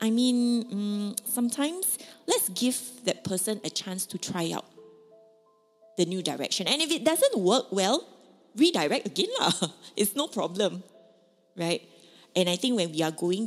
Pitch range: 175-225 Hz